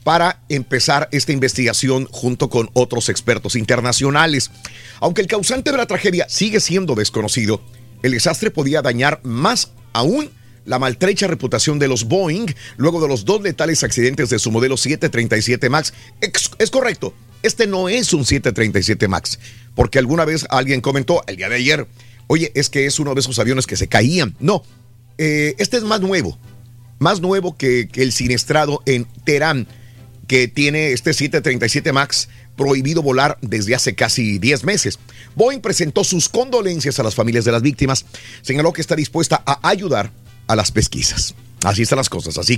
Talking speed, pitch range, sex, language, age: 170 wpm, 120-160 Hz, male, Spanish, 50-69